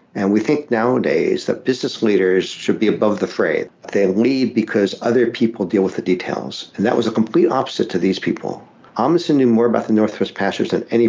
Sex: male